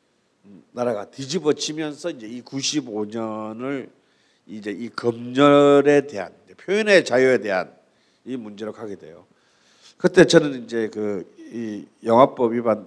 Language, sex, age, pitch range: Korean, male, 50-69, 110-140 Hz